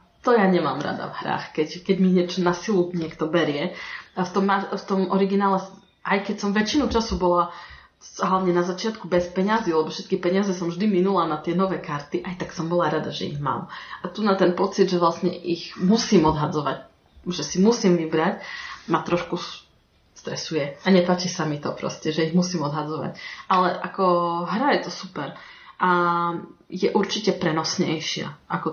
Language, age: Slovak, 20-39